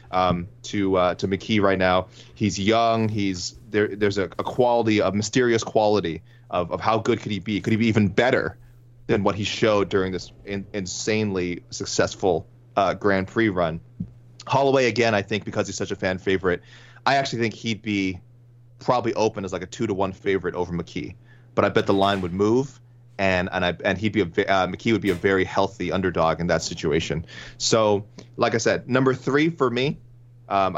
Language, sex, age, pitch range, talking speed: English, male, 30-49, 95-120 Hz, 200 wpm